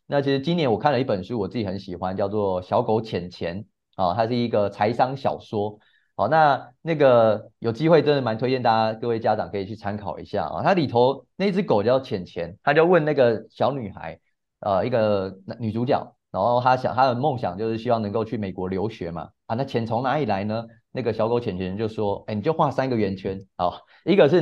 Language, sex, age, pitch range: Chinese, male, 30-49, 105-135 Hz